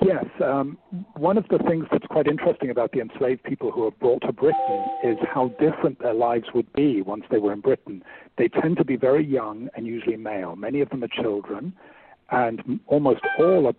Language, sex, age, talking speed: English, male, 60-79, 210 wpm